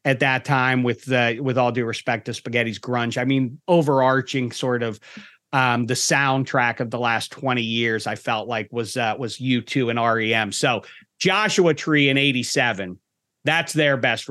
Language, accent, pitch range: English, American, 115-140 Hz